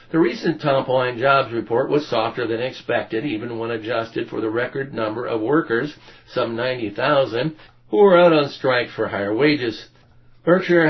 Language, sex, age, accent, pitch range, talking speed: English, male, 60-79, American, 110-135 Hz, 165 wpm